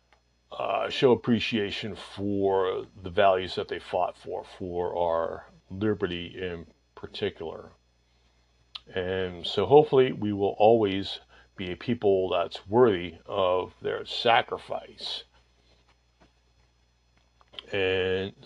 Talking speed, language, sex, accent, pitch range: 100 wpm, English, male, American, 90-105 Hz